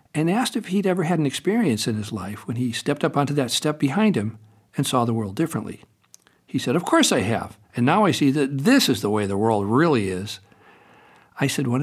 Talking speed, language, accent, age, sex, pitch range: 240 wpm, English, American, 60-79, male, 115-155 Hz